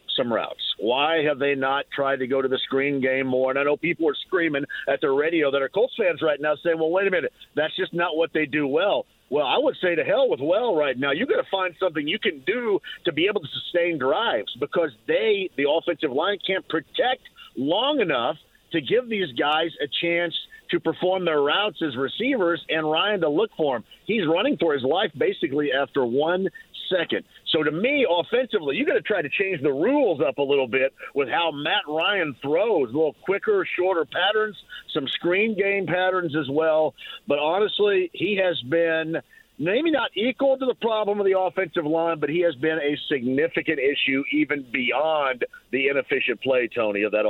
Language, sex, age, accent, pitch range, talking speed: English, male, 50-69, American, 150-230 Hz, 205 wpm